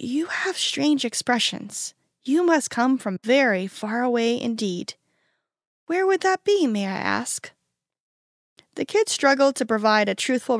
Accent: American